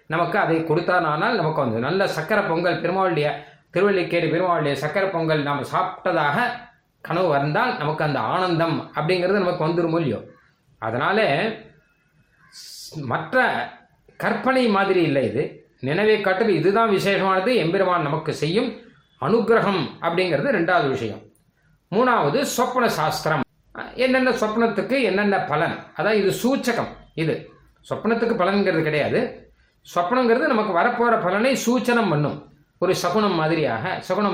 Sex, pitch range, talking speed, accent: male, 160-220 Hz, 110 wpm, native